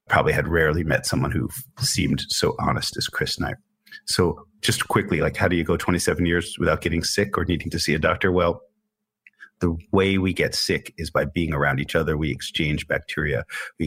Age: 30-49